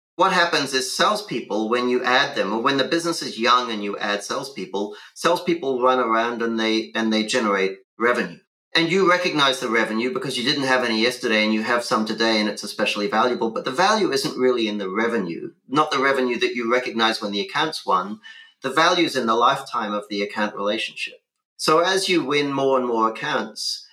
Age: 40-59